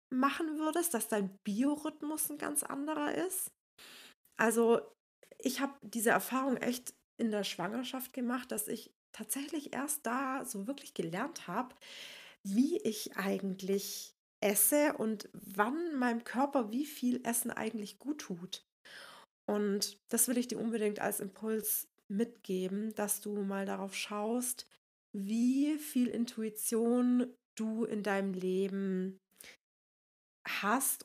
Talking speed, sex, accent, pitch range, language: 125 wpm, female, German, 205-255 Hz, German